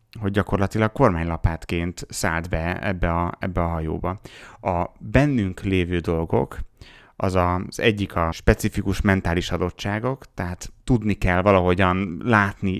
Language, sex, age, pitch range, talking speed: Hungarian, male, 30-49, 90-110 Hz, 125 wpm